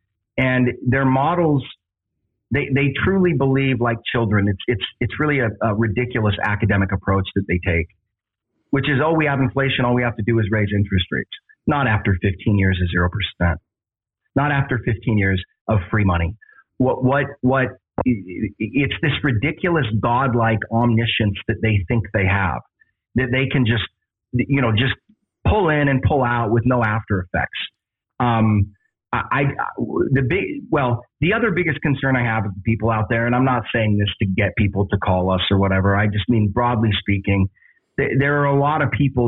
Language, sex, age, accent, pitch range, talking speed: English, male, 30-49, American, 100-130 Hz, 180 wpm